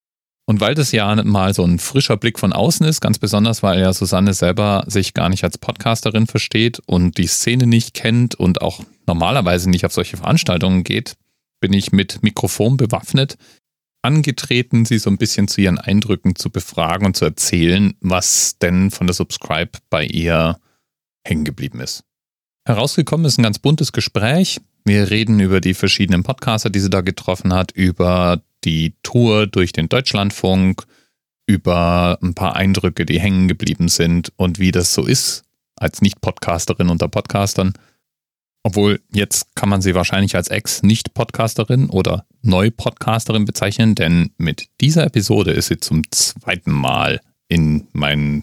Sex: male